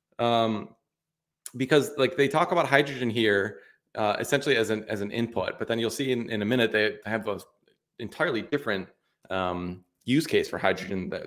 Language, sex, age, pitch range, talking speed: English, male, 30-49, 110-135 Hz, 180 wpm